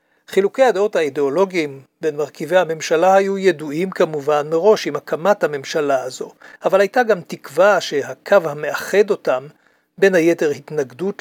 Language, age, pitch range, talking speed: English, 60-79, 160-220 Hz, 130 wpm